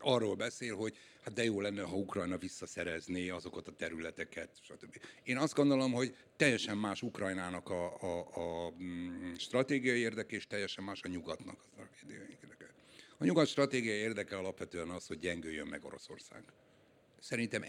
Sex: male